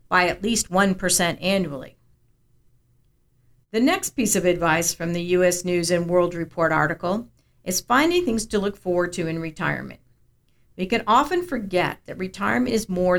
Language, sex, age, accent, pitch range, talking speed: English, female, 50-69, American, 165-205 Hz, 160 wpm